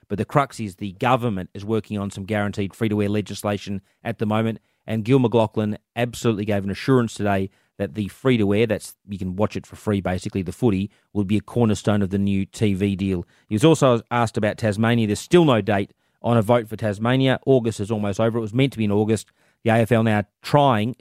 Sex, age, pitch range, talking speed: male, 30-49, 100-120 Hz, 215 wpm